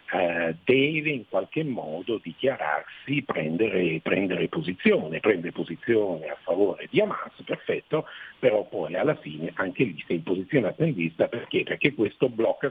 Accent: native